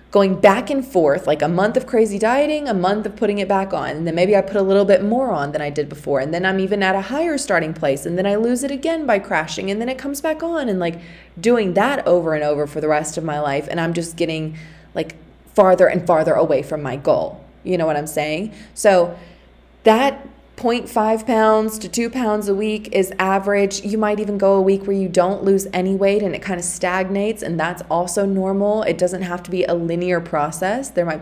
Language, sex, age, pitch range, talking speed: English, female, 20-39, 170-220 Hz, 240 wpm